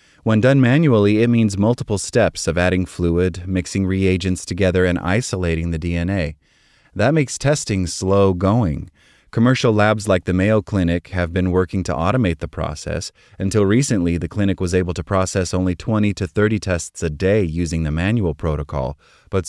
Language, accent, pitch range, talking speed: English, American, 90-110 Hz, 170 wpm